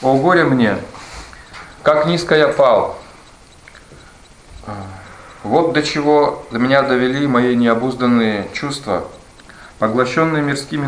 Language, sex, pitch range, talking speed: English, male, 110-130 Hz, 100 wpm